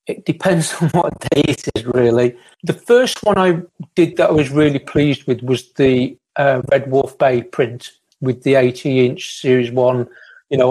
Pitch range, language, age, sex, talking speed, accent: 125-155 Hz, English, 40-59, male, 185 wpm, British